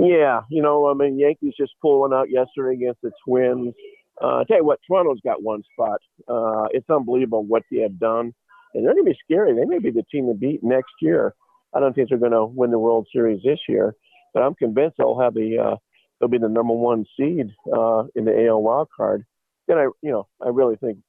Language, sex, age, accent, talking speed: English, male, 50-69, American, 230 wpm